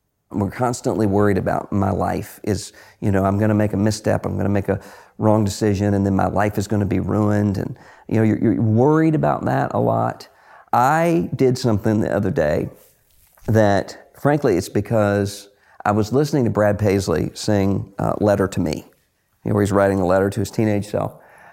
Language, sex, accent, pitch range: English, male, American, 100-125 Hz